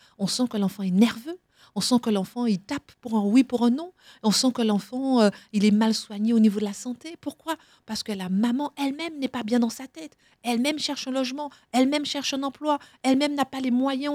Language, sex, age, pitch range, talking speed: French, female, 50-69, 210-260 Hz, 240 wpm